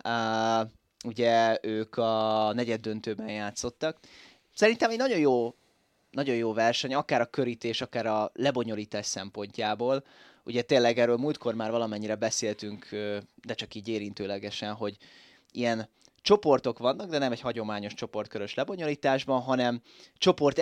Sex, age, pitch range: male, 20-39, 110-130 Hz